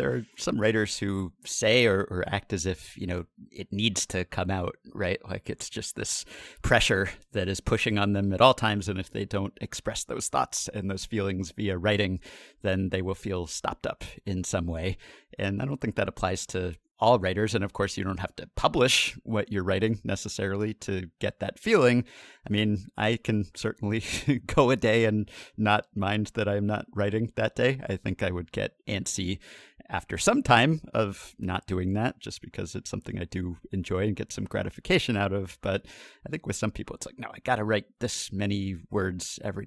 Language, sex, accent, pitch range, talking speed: English, male, American, 95-115 Hz, 210 wpm